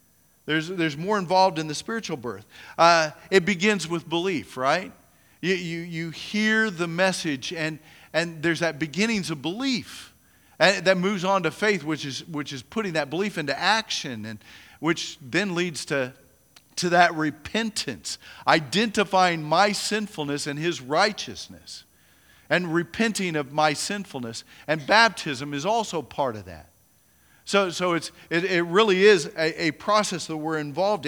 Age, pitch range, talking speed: 50-69, 150-195 Hz, 155 wpm